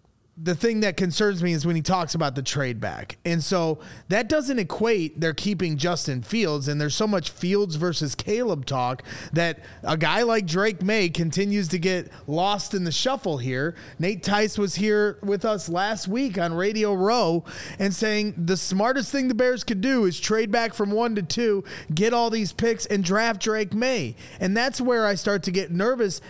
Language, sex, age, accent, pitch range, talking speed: English, male, 30-49, American, 150-210 Hz, 200 wpm